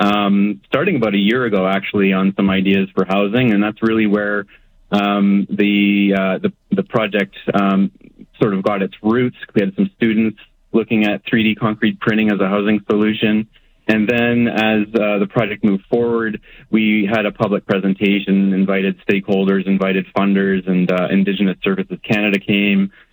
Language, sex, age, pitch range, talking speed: English, male, 30-49, 95-105 Hz, 165 wpm